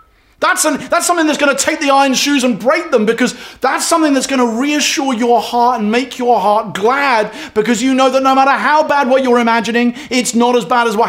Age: 30-49